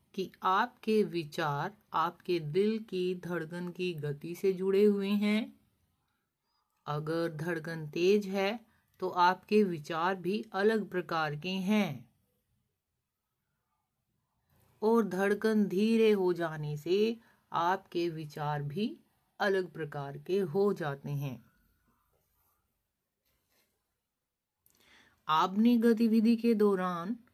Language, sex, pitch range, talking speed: Hindi, female, 160-200 Hz, 95 wpm